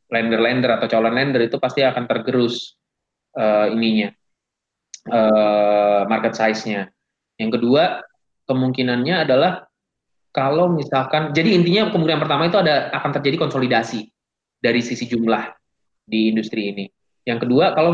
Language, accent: Indonesian, native